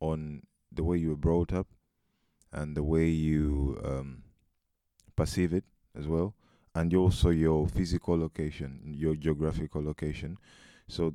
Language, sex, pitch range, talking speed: English, male, 80-90 Hz, 135 wpm